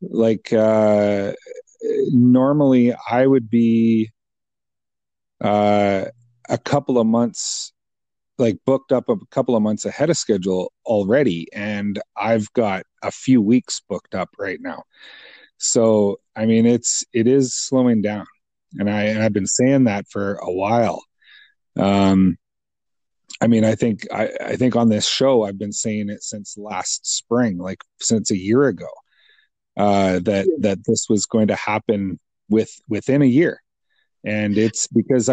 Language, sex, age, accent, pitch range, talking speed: English, male, 30-49, American, 100-125 Hz, 150 wpm